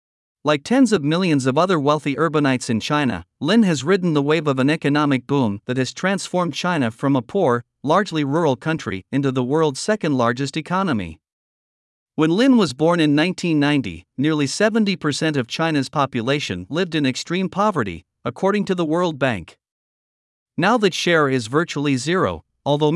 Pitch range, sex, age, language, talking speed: 130-170 Hz, male, 50-69, Vietnamese, 160 wpm